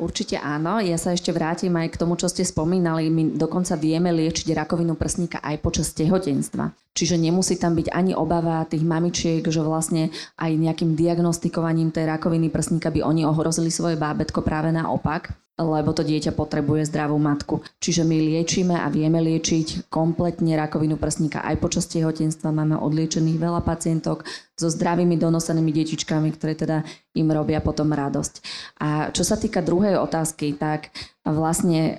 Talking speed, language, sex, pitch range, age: 160 wpm, Slovak, female, 155-175 Hz, 20-39